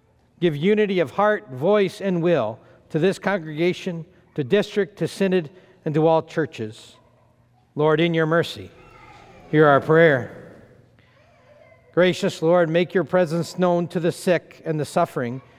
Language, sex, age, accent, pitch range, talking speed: English, male, 50-69, American, 130-175 Hz, 140 wpm